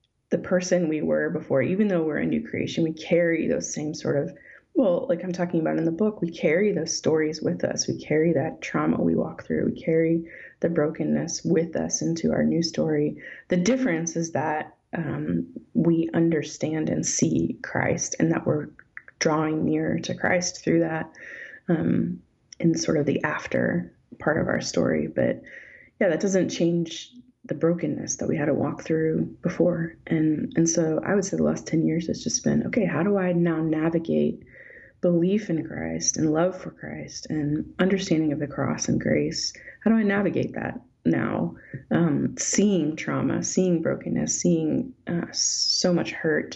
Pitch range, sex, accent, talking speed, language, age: 150-175 Hz, female, American, 180 wpm, English, 30-49